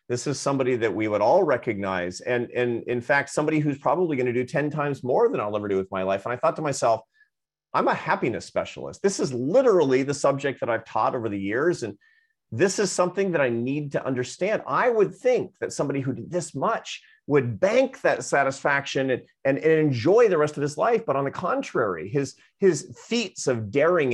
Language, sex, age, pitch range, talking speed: English, male, 40-59, 125-185 Hz, 220 wpm